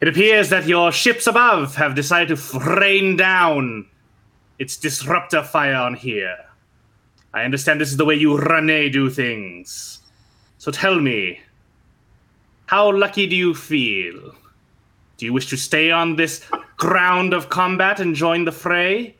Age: 20-39